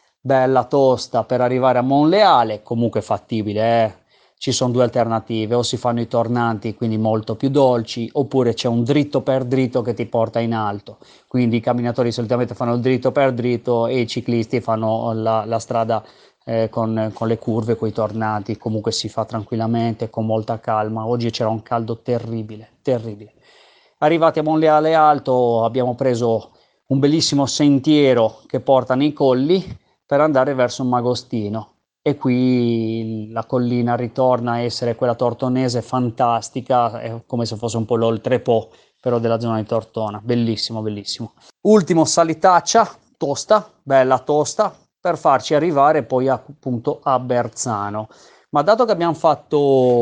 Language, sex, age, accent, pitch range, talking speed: Italian, male, 30-49, native, 115-135 Hz, 155 wpm